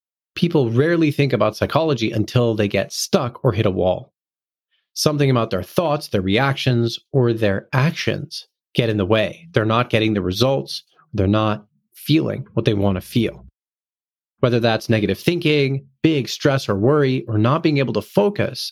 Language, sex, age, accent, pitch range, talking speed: English, male, 30-49, American, 110-150 Hz, 170 wpm